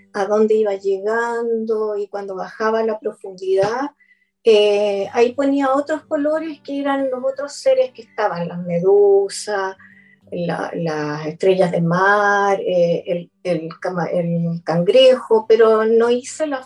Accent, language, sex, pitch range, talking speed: American, Spanish, female, 200-265 Hz, 140 wpm